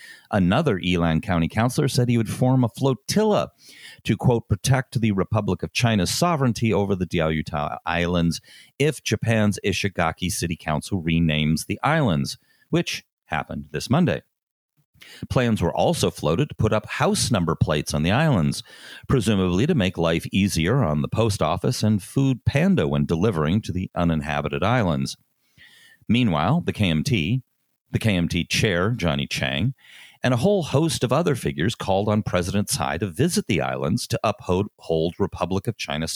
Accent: American